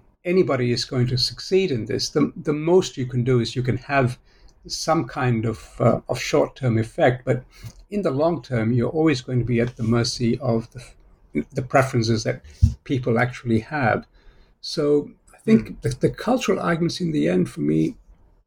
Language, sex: English, male